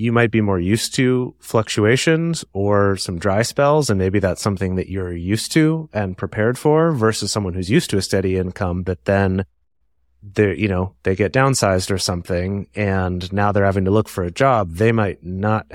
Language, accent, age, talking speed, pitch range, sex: English, American, 30-49, 200 wpm, 90-110 Hz, male